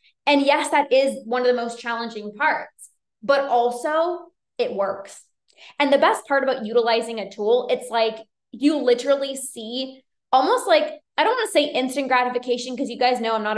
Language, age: English, 20-39